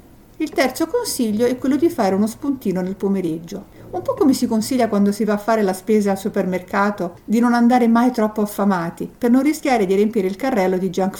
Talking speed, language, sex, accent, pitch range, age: 215 wpm, Italian, female, native, 185-270 Hz, 50-69